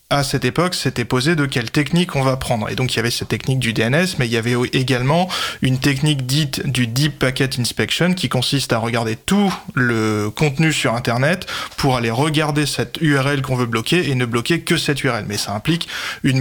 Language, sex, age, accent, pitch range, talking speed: French, male, 20-39, French, 125-155 Hz, 215 wpm